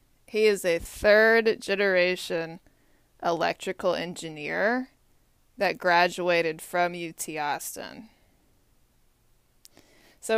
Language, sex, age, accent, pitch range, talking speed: English, female, 20-39, American, 170-200 Hz, 80 wpm